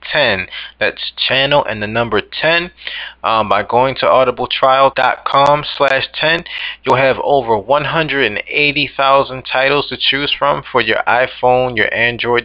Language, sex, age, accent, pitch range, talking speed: English, male, 20-39, American, 105-135 Hz, 130 wpm